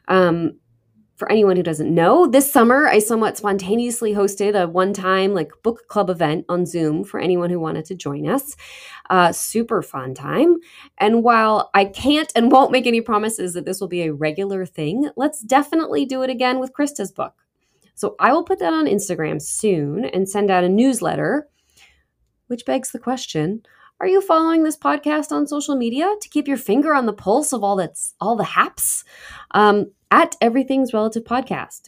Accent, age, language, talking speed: American, 20-39, English, 185 wpm